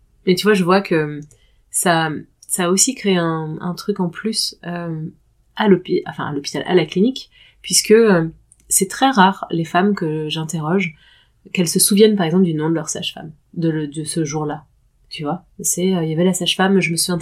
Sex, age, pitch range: female, 30-49, 155-190 Hz